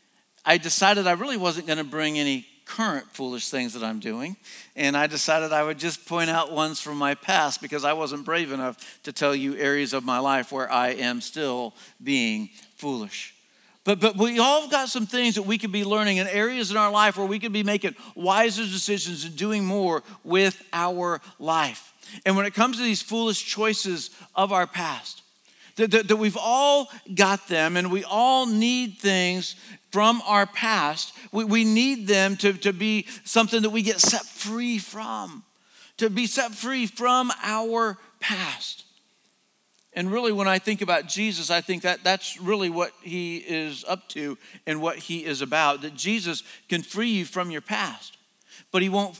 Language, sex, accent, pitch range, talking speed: English, male, American, 165-220 Hz, 190 wpm